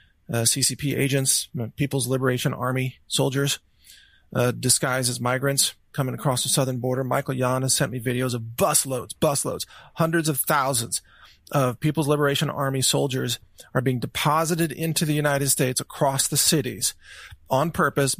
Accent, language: American, English